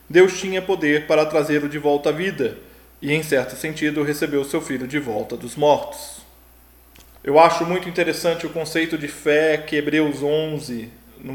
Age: 20-39